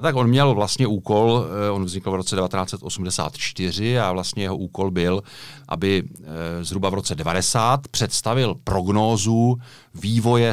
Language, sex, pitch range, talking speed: Czech, male, 95-115 Hz, 130 wpm